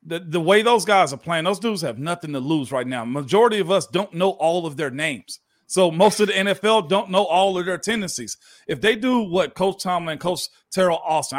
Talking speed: 230 wpm